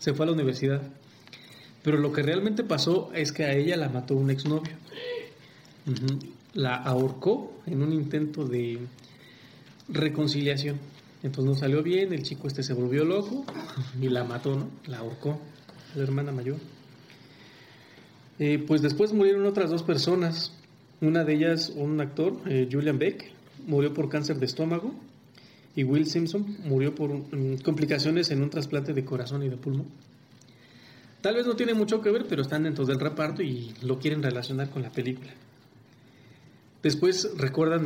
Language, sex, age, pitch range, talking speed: Spanish, male, 40-59, 135-160 Hz, 155 wpm